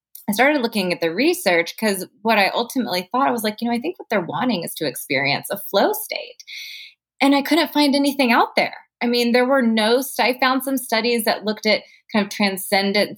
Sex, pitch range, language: female, 160-225 Hz, English